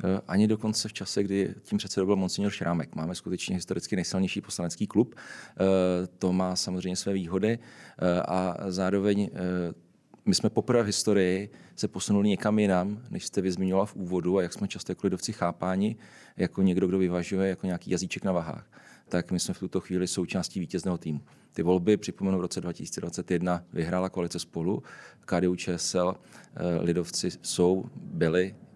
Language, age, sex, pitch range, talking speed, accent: Czech, 40-59, male, 90-95 Hz, 160 wpm, native